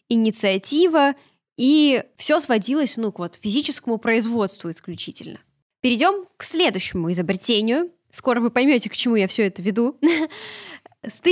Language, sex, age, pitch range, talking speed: Russian, female, 10-29, 205-265 Hz, 135 wpm